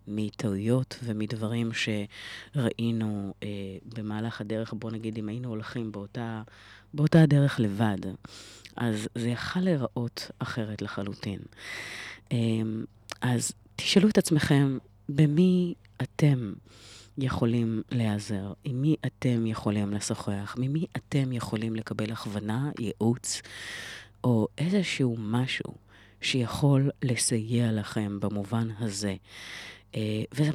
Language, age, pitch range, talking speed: Hebrew, 30-49, 105-130 Hz, 100 wpm